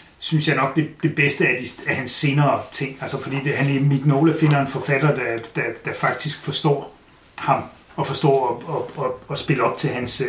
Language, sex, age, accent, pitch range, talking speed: English, male, 30-49, Danish, 135-160 Hz, 200 wpm